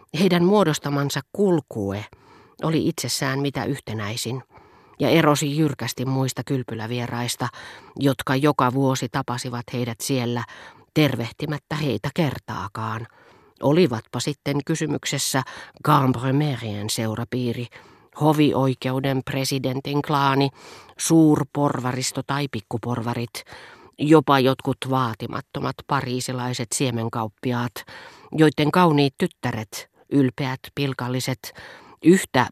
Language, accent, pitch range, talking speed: Finnish, native, 120-145 Hz, 80 wpm